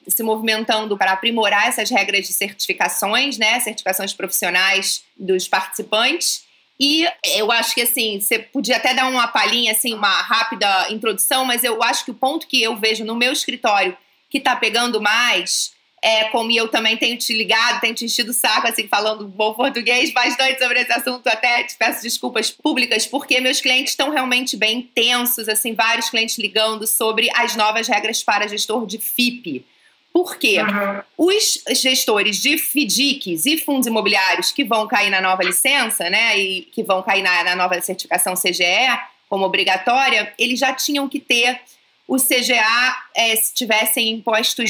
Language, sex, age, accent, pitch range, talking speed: Portuguese, female, 30-49, Brazilian, 215-255 Hz, 170 wpm